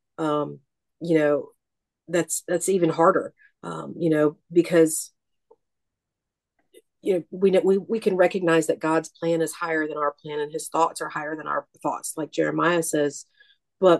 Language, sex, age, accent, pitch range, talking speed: English, female, 40-59, American, 150-175 Hz, 165 wpm